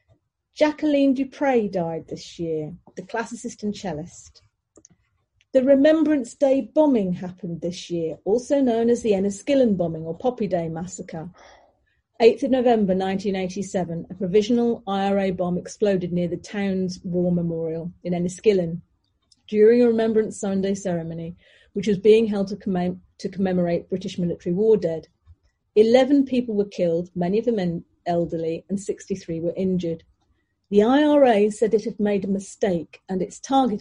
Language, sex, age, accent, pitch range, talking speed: English, female, 40-59, British, 175-235 Hz, 145 wpm